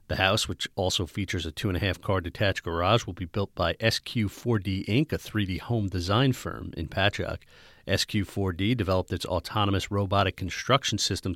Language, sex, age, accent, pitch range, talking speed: English, male, 40-59, American, 90-110 Hz, 160 wpm